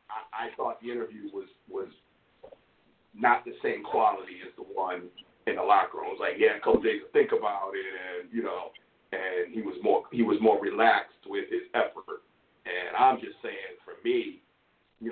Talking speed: 185 wpm